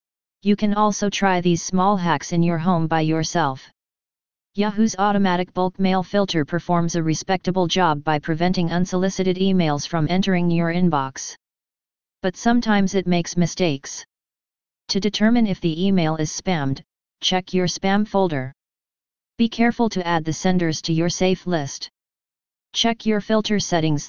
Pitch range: 165-195 Hz